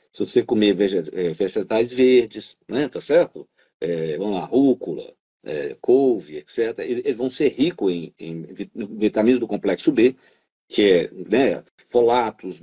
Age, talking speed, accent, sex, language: 50-69, 130 wpm, Brazilian, male, Portuguese